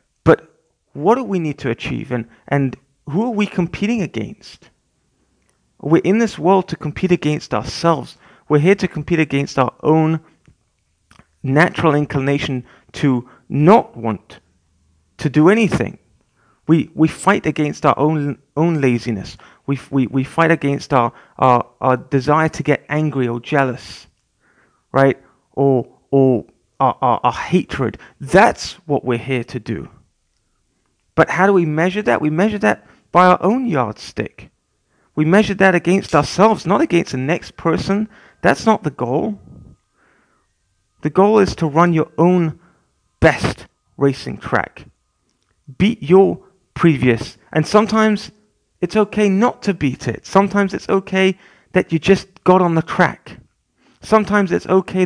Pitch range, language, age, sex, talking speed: 130-185 Hz, English, 30-49, male, 145 wpm